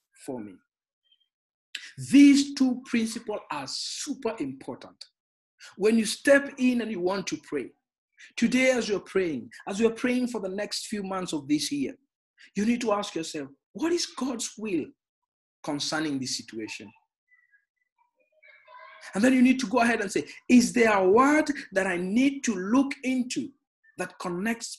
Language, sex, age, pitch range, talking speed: English, male, 50-69, 190-285 Hz, 155 wpm